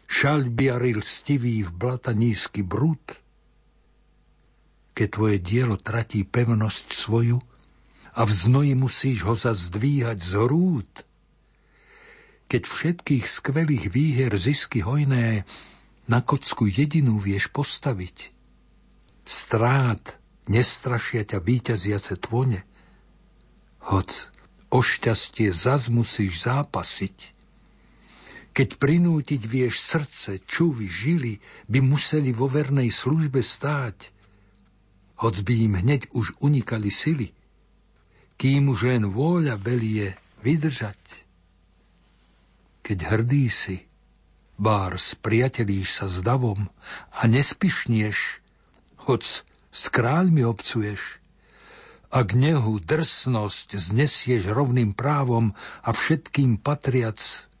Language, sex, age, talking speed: Slovak, male, 60-79, 95 wpm